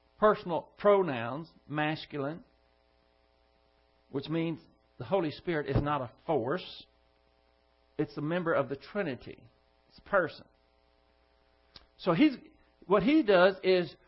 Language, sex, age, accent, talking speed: English, male, 60-79, American, 115 wpm